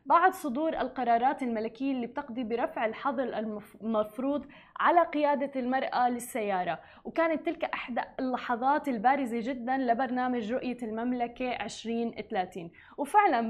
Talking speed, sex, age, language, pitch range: 105 wpm, female, 10-29, Arabic, 225-275 Hz